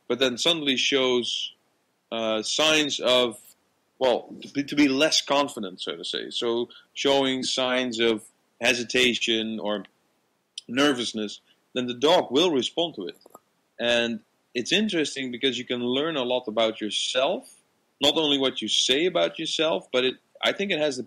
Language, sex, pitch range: Italian, male, 110-130 Hz